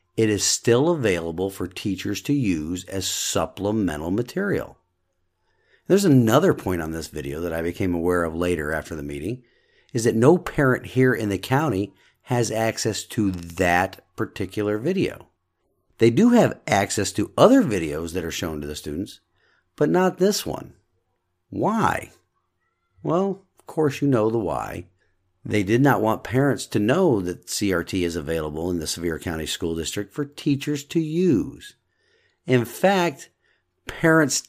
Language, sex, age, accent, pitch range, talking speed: English, male, 50-69, American, 90-130 Hz, 155 wpm